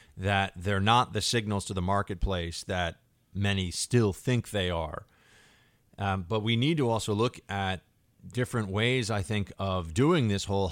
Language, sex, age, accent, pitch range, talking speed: English, male, 40-59, American, 95-120 Hz, 170 wpm